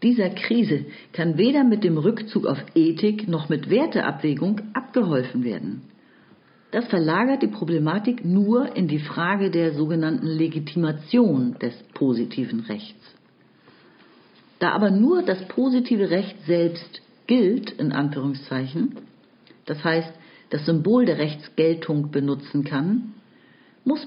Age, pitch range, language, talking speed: 50-69, 150-225 Hz, German, 115 wpm